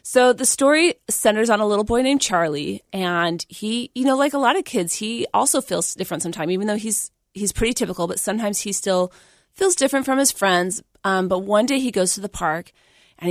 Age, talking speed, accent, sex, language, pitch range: 30-49, 220 wpm, American, female, English, 175-220 Hz